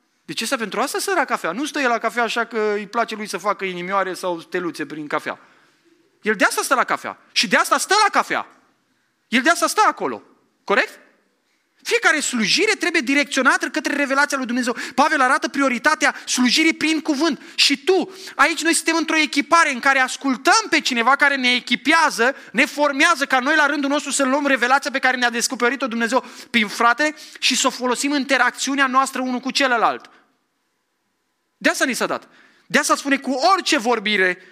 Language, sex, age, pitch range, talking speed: English, male, 20-39, 195-285 Hz, 190 wpm